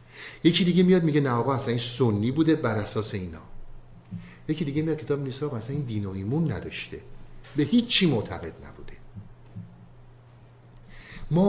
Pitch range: 115-145 Hz